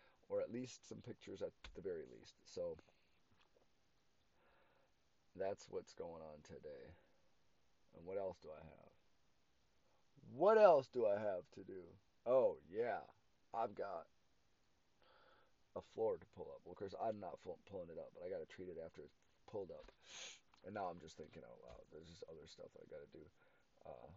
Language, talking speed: English, 180 wpm